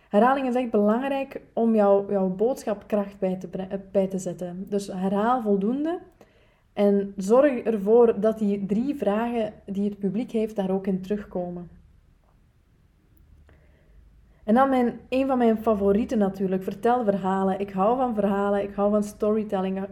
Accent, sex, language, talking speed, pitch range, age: Dutch, female, Dutch, 145 wpm, 190-225 Hz, 20-39